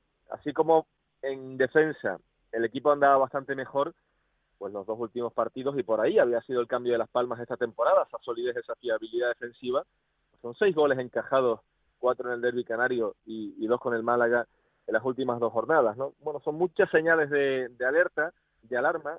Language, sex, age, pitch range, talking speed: Spanish, male, 30-49, 125-155 Hz, 190 wpm